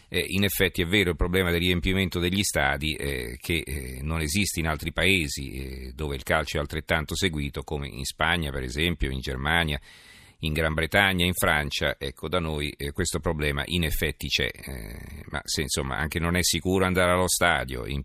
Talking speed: 195 wpm